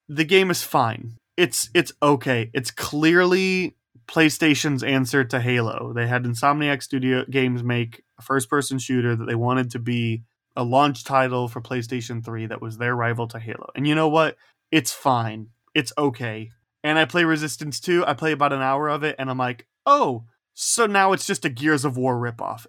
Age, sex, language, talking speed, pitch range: 20-39, male, English, 190 wpm, 120-150 Hz